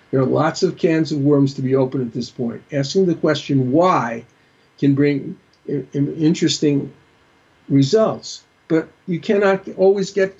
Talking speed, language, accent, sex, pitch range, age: 150 wpm, English, American, male, 135-175 Hz, 50-69